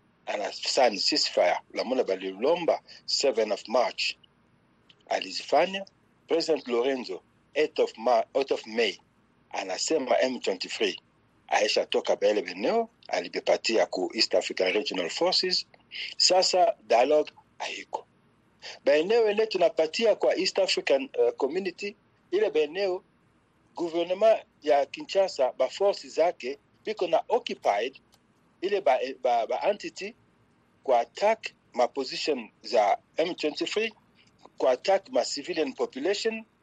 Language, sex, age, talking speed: Swahili, male, 60-79, 110 wpm